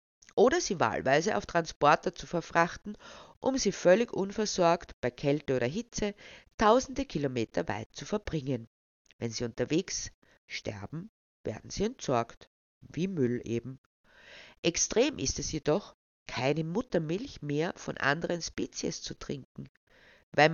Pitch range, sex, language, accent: 130-195 Hz, female, German, Austrian